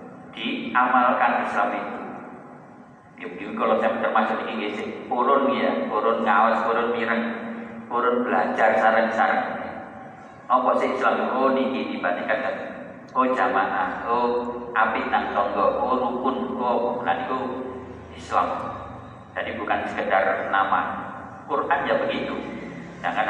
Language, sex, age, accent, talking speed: Indonesian, male, 40-59, native, 105 wpm